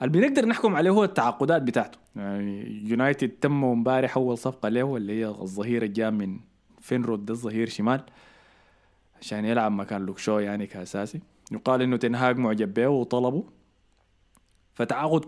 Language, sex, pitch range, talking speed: Arabic, male, 110-155 Hz, 135 wpm